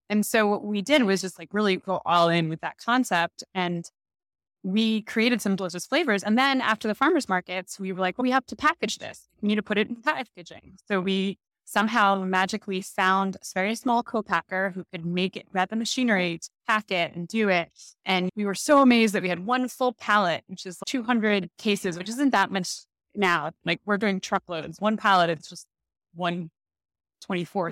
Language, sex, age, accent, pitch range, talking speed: English, female, 20-39, American, 185-240 Hz, 205 wpm